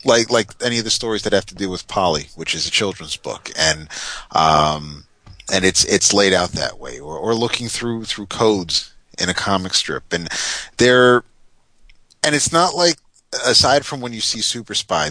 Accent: American